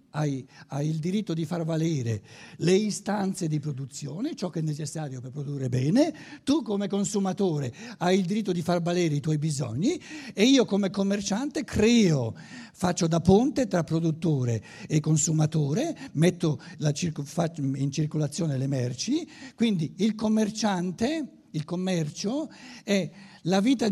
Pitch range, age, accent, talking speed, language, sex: 145-200 Hz, 60-79, native, 135 wpm, Italian, male